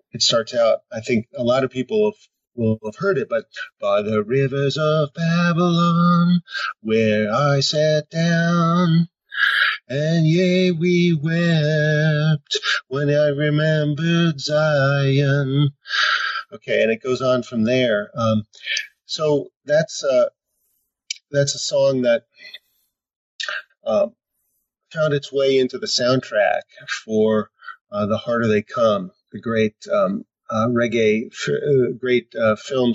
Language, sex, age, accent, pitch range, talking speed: English, male, 30-49, American, 115-170 Hz, 120 wpm